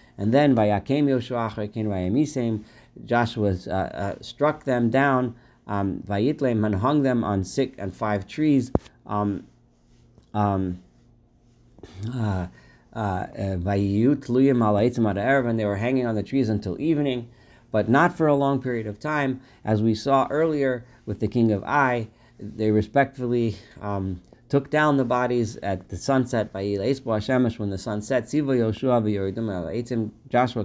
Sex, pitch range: male, 105-130 Hz